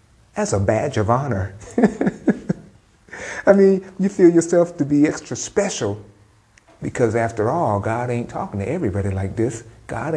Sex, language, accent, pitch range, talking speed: male, English, American, 110-150 Hz, 150 wpm